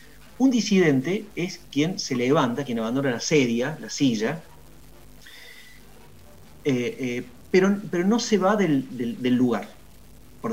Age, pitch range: 40-59, 125-210 Hz